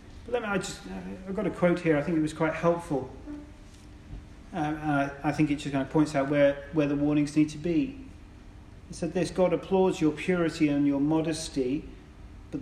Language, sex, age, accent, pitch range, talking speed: English, male, 40-59, British, 100-155 Hz, 205 wpm